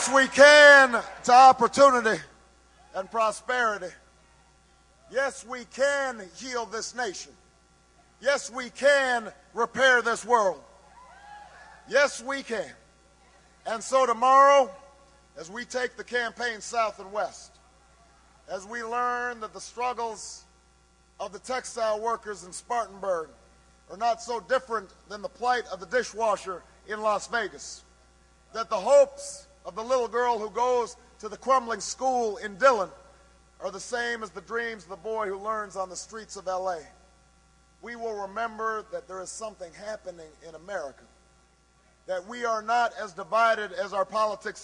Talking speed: 145 wpm